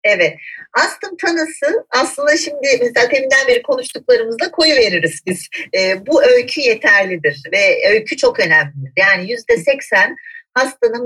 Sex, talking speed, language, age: female, 130 wpm, Turkish, 40-59